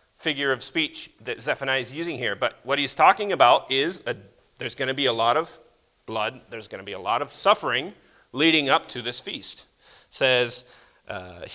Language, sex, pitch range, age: English, male, 130-185 Hz, 40-59